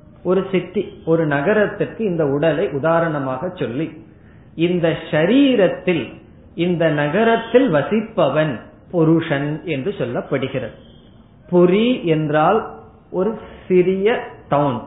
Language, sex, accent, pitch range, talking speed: Tamil, male, native, 145-195 Hz, 50 wpm